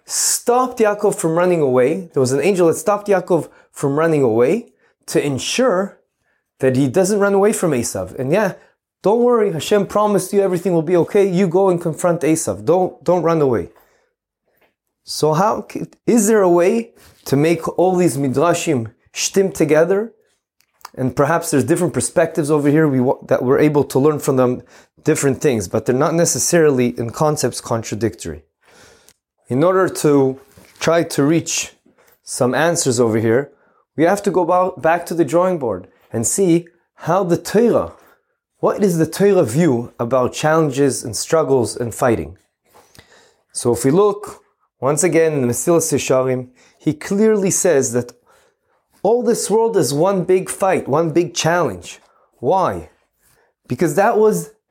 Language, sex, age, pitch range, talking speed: English, male, 20-39, 135-195 Hz, 160 wpm